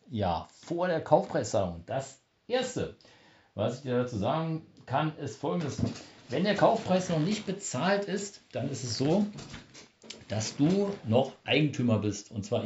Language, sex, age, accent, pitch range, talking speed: German, male, 60-79, German, 110-160 Hz, 150 wpm